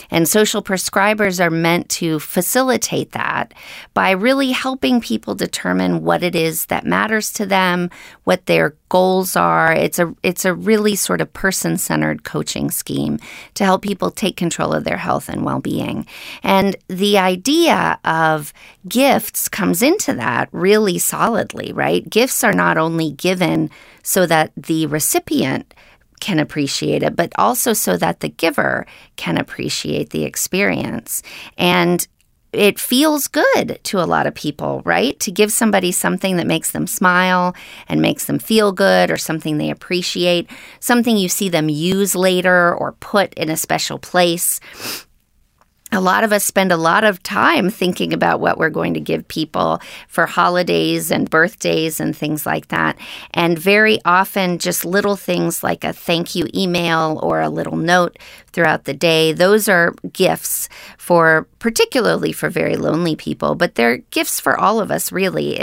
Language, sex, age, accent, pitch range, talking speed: English, female, 40-59, American, 160-205 Hz, 160 wpm